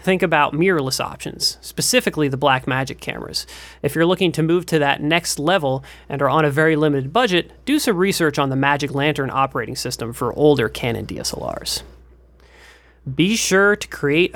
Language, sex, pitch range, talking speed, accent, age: English, male, 135-180 Hz, 170 wpm, American, 30-49